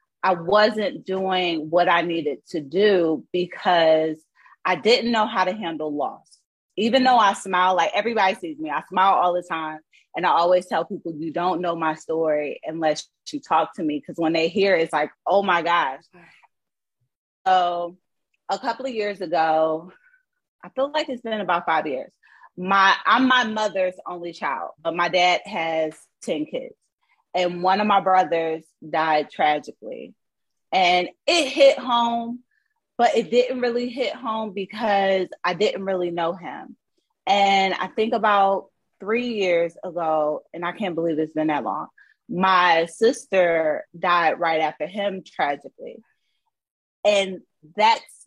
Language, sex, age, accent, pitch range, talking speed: English, female, 30-49, American, 165-220 Hz, 160 wpm